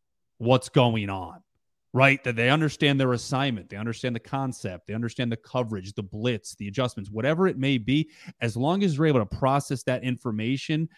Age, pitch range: 30-49, 110-135 Hz